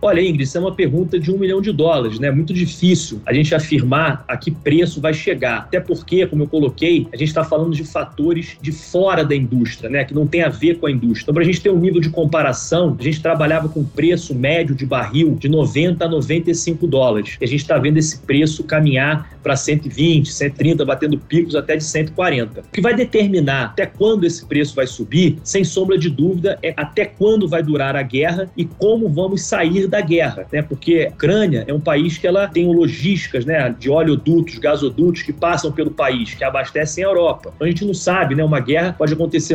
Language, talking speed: Portuguese, 220 wpm